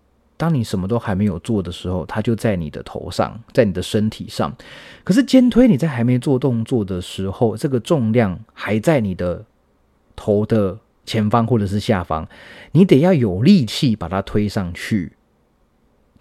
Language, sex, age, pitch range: Chinese, male, 30-49, 95-130 Hz